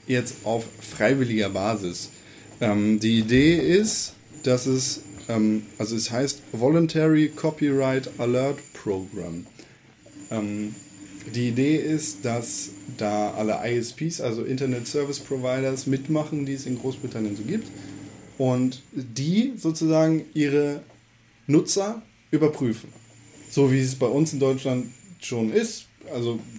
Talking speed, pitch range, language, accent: 120 wpm, 115-155 Hz, German, German